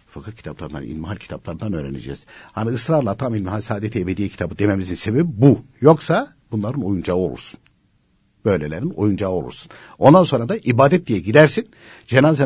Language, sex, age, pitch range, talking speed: Turkish, male, 60-79, 105-165 Hz, 140 wpm